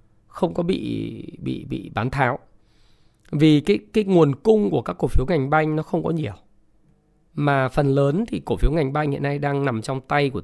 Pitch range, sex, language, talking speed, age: 140-190 Hz, male, Vietnamese, 215 wpm, 20-39